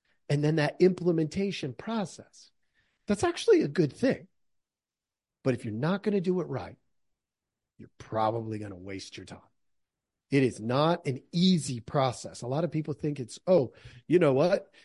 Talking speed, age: 170 wpm, 40-59